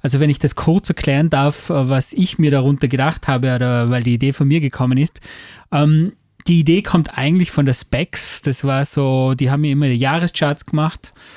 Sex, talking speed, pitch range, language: male, 210 wpm, 135-160 Hz, German